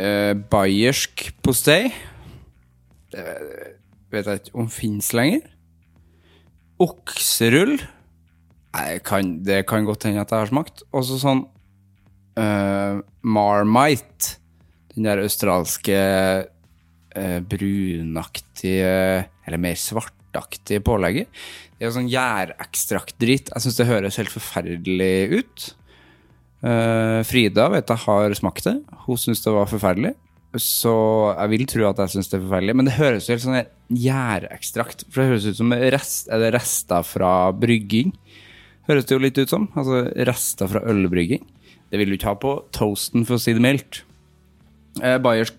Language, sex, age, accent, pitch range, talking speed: English, male, 30-49, Norwegian, 90-120 Hz, 145 wpm